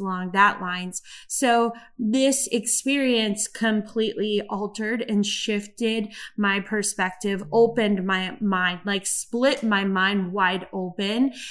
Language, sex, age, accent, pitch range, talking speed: English, female, 20-39, American, 195-225 Hz, 110 wpm